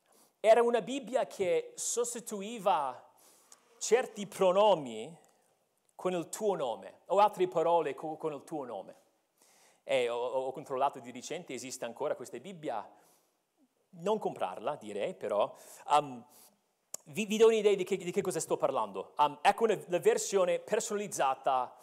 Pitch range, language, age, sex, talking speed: 175-265 Hz, Italian, 40-59, male, 135 wpm